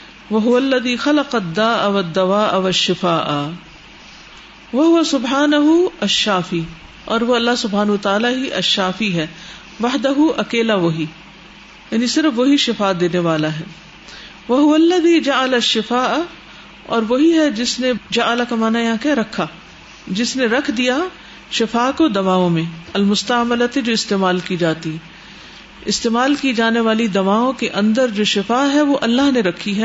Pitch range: 190-260 Hz